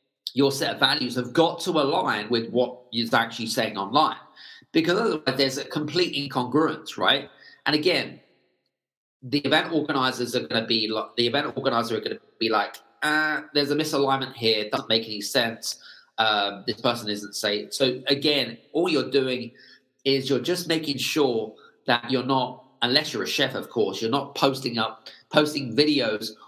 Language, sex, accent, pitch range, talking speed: English, male, British, 115-145 Hz, 175 wpm